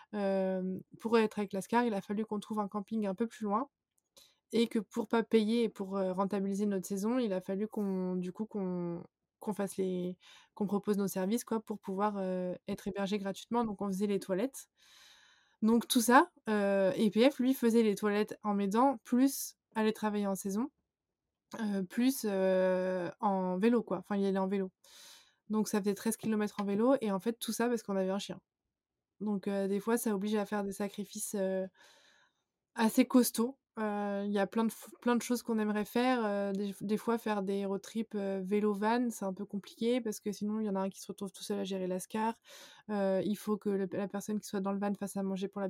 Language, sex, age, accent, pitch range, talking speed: French, female, 20-39, French, 195-225 Hz, 225 wpm